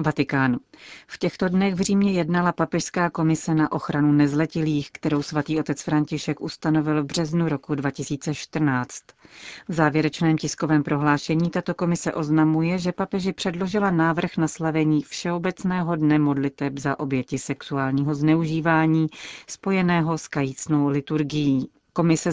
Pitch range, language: 150-170 Hz, Czech